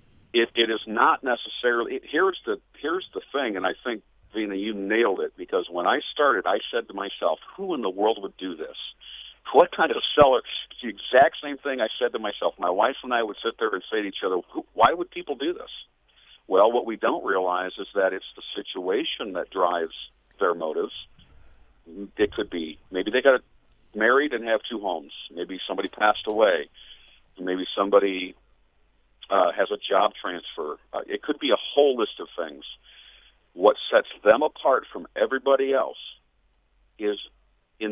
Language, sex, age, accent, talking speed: English, male, 50-69, American, 190 wpm